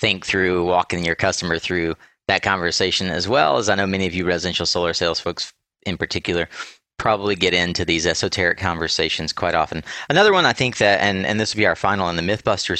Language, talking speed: English, 210 wpm